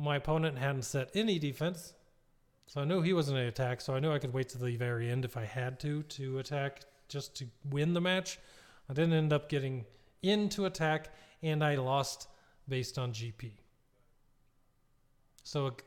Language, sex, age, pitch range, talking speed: English, male, 30-49, 120-145 Hz, 185 wpm